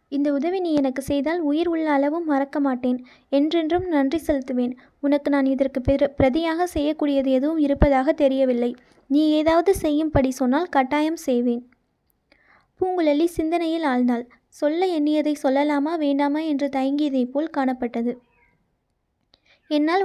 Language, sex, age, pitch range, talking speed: Tamil, female, 20-39, 270-310 Hz, 120 wpm